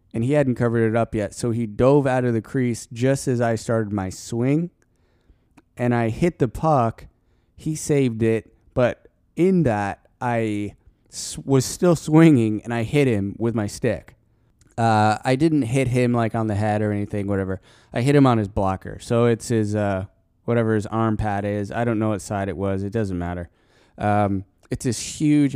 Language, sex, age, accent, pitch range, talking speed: English, male, 20-39, American, 105-125 Hz, 195 wpm